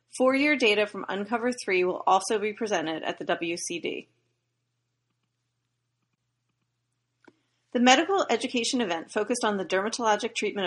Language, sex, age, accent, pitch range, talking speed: English, female, 30-49, American, 185-245 Hz, 120 wpm